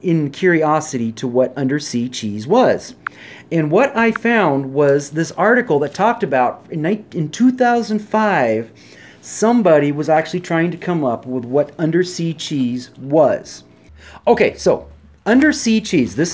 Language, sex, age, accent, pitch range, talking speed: English, male, 40-59, American, 150-205 Hz, 130 wpm